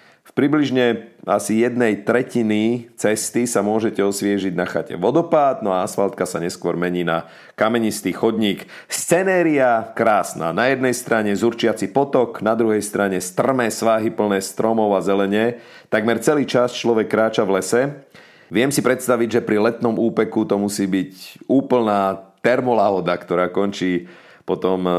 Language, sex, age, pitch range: Slovak, male, 40-59, 95-120 Hz